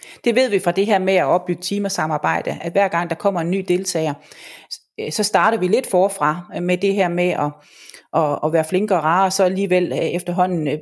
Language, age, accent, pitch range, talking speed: Danish, 30-49, native, 165-210 Hz, 205 wpm